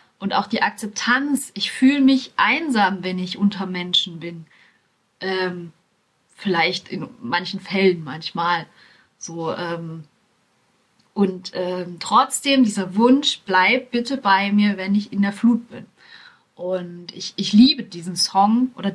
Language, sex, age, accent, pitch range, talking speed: German, female, 30-49, German, 185-230 Hz, 135 wpm